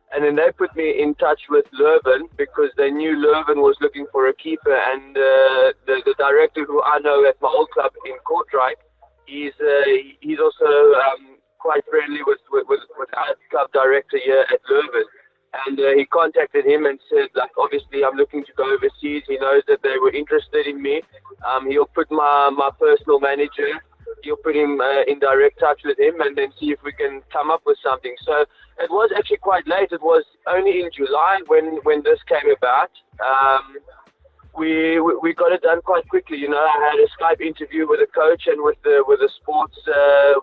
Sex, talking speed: male, 205 wpm